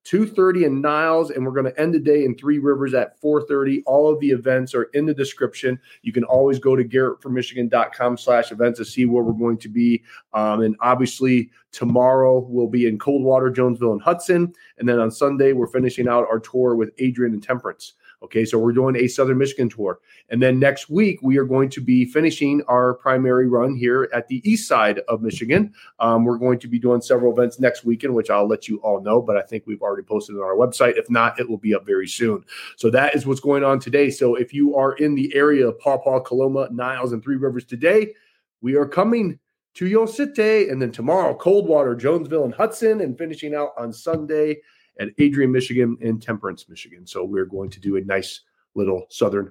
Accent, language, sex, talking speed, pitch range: American, English, male, 220 wpm, 115-140 Hz